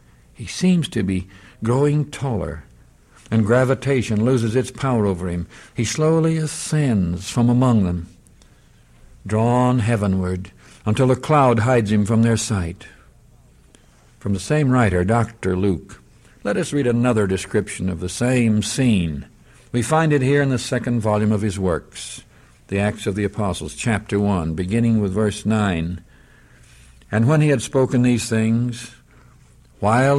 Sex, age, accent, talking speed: male, 60-79, American, 145 wpm